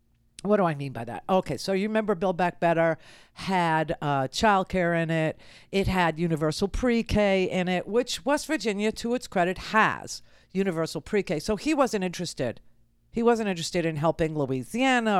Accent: American